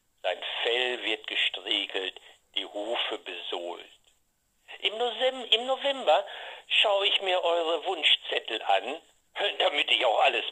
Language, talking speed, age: German, 120 wpm, 60-79